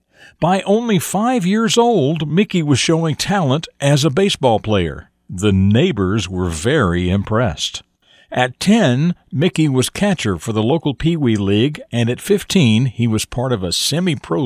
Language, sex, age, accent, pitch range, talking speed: English, male, 60-79, American, 105-160 Hz, 155 wpm